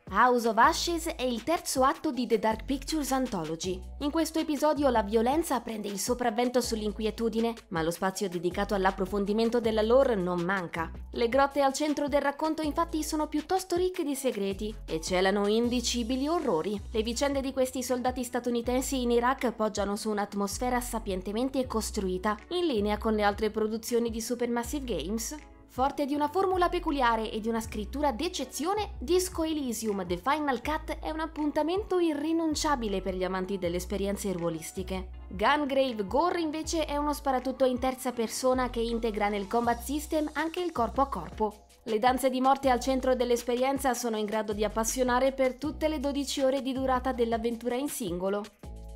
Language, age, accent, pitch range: Italian, 20-39, native, 215-285 Hz